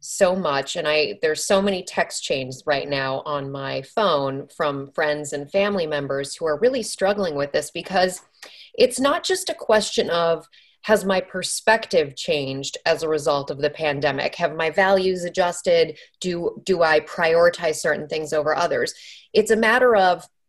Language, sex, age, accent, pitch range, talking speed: English, female, 30-49, American, 155-200 Hz, 170 wpm